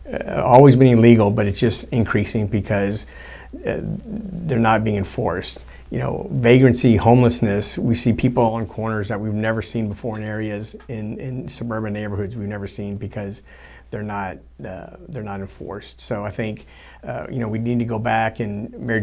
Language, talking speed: English, 180 wpm